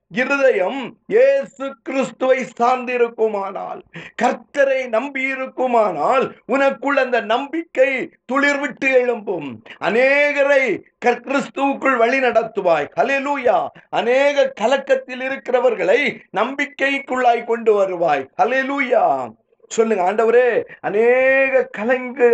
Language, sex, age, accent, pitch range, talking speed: Tamil, male, 50-69, native, 235-275 Hz, 55 wpm